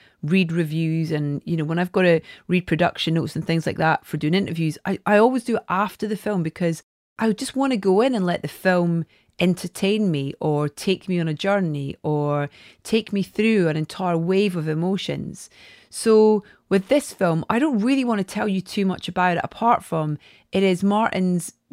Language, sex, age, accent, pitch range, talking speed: English, female, 30-49, British, 160-205 Hz, 205 wpm